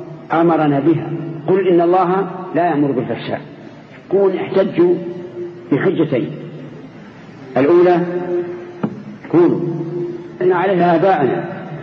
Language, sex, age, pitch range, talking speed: Arabic, male, 50-69, 150-175 Hz, 80 wpm